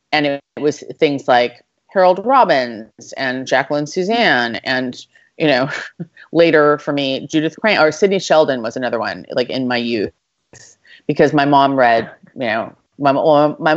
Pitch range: 130-155 Hz